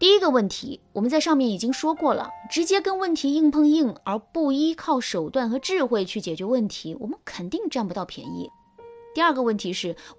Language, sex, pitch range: Chinese, female, 195-305 Hz